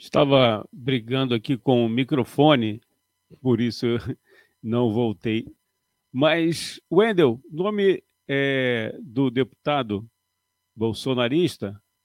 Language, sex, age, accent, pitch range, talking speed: Portuguese, male, 50-69, Brazilian, 100-135 Hz, 90 wpm